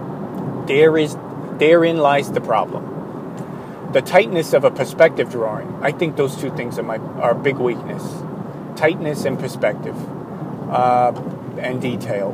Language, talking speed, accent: English, 140 wpm, American